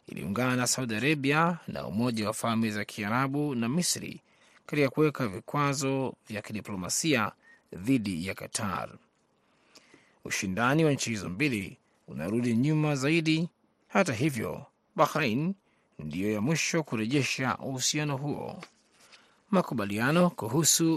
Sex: male